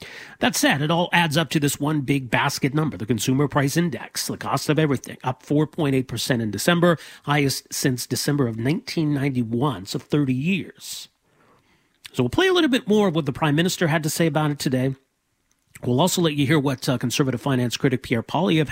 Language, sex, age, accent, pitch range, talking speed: English, male, 40-59, American, 130-175 Hz, 200 wpm